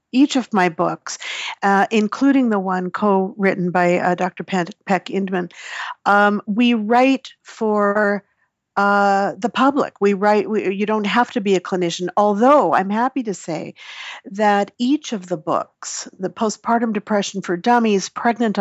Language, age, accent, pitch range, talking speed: English, 50-69, American, 185-240 Hz, 150 wpm